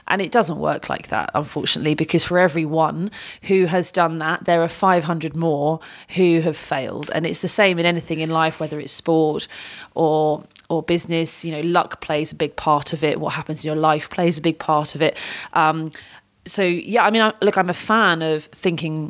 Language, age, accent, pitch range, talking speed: English, 30-49, British, 155-200 Hz, 205 wpm